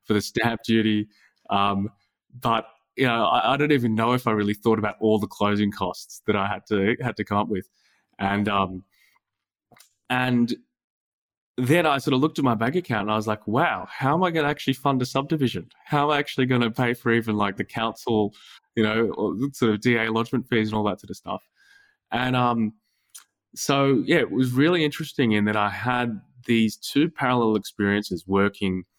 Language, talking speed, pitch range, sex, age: English, 205 wpm, 100-125 Hz, male, 20-39